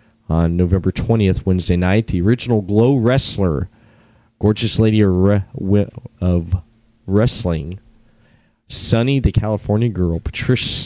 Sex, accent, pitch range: male, American, 90-115 Hz